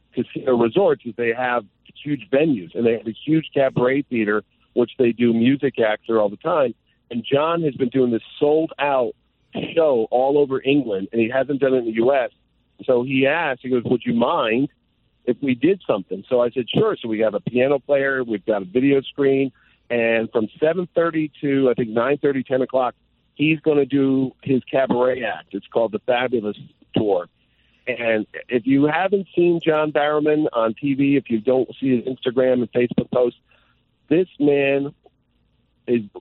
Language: English